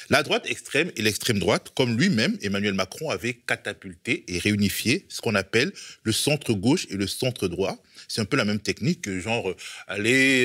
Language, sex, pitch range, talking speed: French, male, 105-130 Hz, 185 wpm